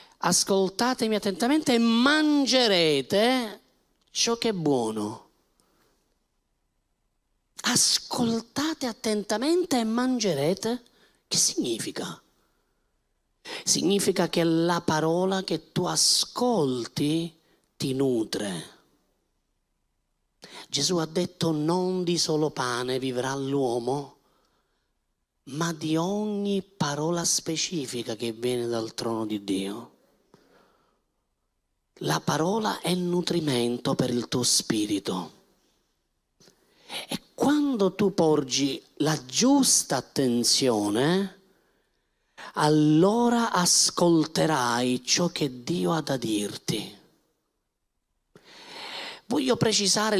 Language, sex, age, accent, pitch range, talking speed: Italian, male, 40-59, native, 135-215 Hz, 80 wpm